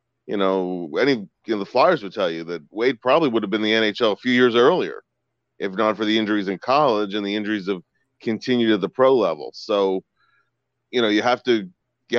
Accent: American